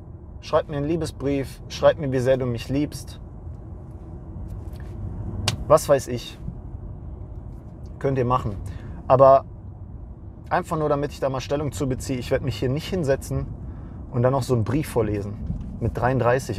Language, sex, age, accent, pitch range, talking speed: English, male, 30-49, German, 90-125 Hz, 150 wpm